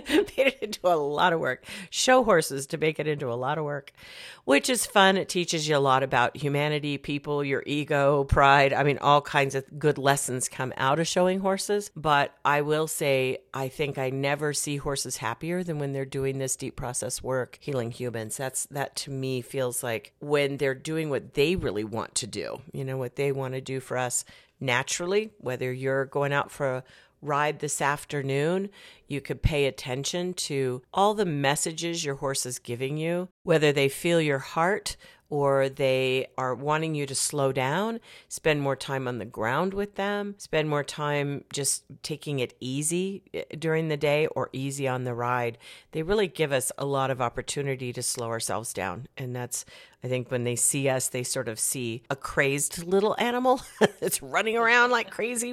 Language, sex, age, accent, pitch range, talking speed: English, female, 50-69, American, 130-160 Hz, 195 wpm